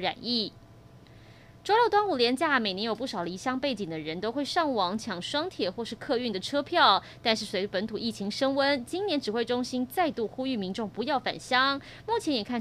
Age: 20-39